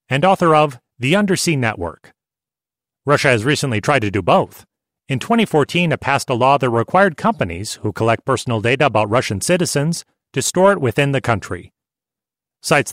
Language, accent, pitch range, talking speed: English, American, 115-160 Hz, 165 wpm